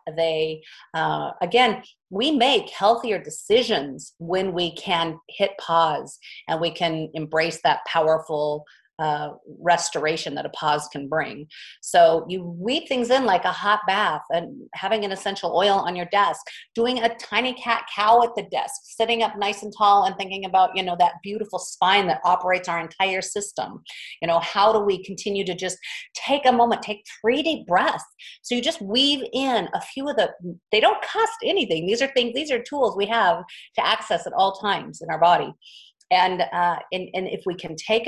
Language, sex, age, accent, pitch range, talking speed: English, female, 40-59, American, 170-230 Hz, 190 wpm